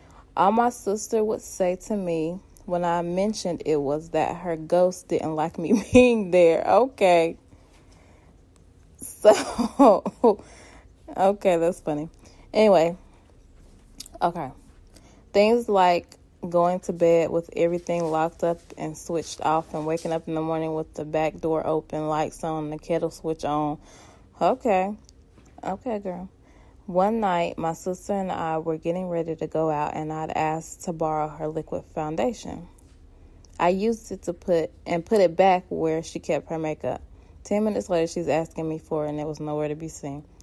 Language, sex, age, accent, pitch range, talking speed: English, female, 20-39, American, 155-185 Hz, 160 wpm